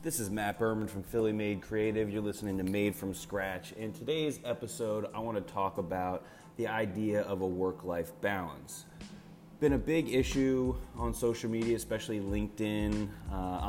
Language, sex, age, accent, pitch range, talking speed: English, male, 30-49, American, 95-110 Hz, 160 wpm